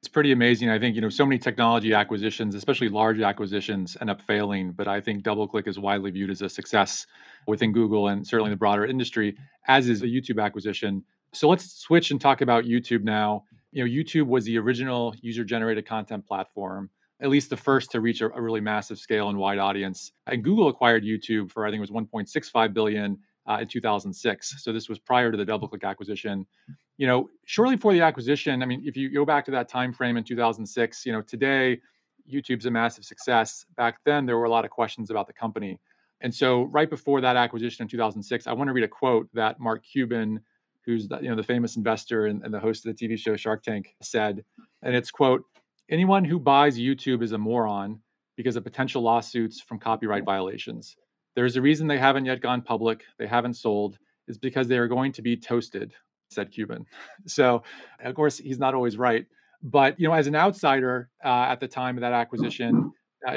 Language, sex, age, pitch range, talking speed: English, male, 30-49, 110-130 Hz, 215 wpm